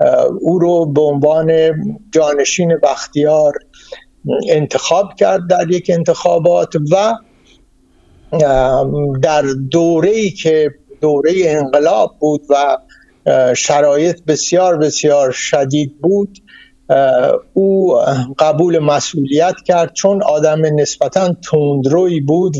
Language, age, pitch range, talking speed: Persian, 60-79, 145-175 Hz, 90 wpm